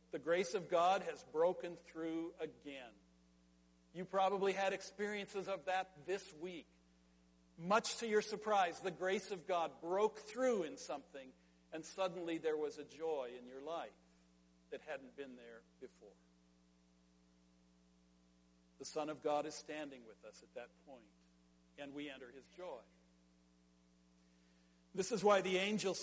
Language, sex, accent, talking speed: English, male, American, 145 wpm